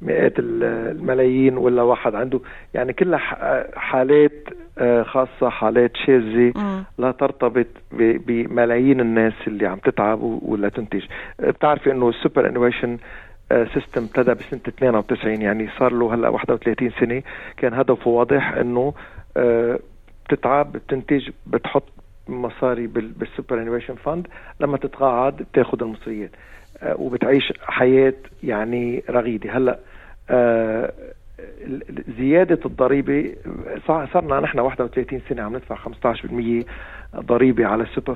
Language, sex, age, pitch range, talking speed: Arabic, male, 50-69, 115-135 Hz, 110 wpm